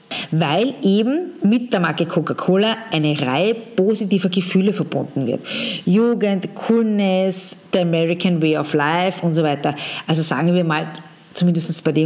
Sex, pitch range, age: female, 165-220 Hz, 50-69